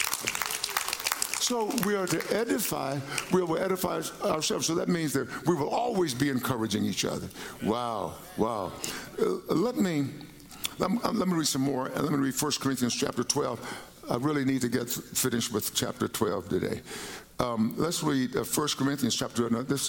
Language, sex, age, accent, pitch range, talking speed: English, male, 50-69, American, 120-155 Hz, 165 wpm